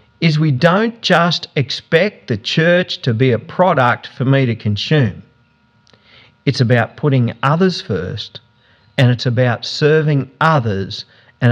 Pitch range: 110-145 Hz